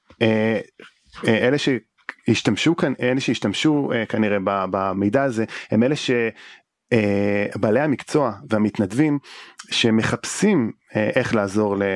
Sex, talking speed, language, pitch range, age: male, 95 wpm, English, 105-130 Hz, 30-49